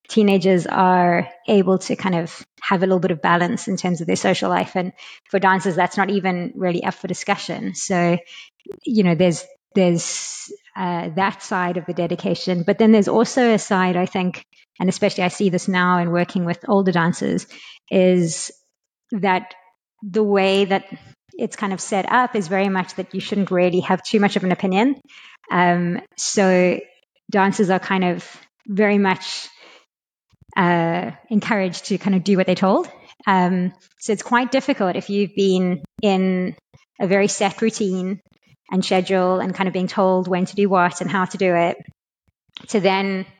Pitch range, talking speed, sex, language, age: 180-200 Hz, 180 wpm, female, English, 20-39